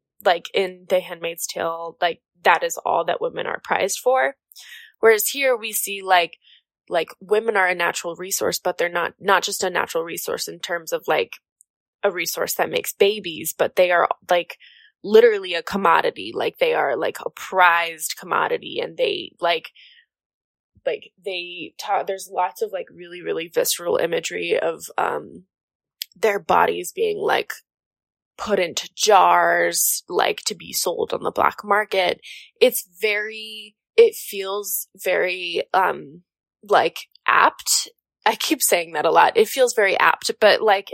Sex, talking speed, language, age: female, 155 wpm, English, 20-39